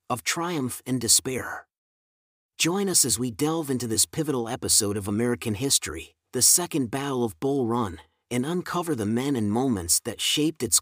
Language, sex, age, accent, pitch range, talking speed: English, male, 40-59, American, 110-145 Hz, 170 wpm